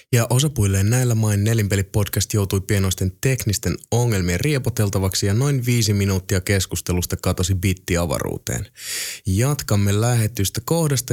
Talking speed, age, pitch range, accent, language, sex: 110 wpm, 20-39, 95-120 Hz, native, Finnish, male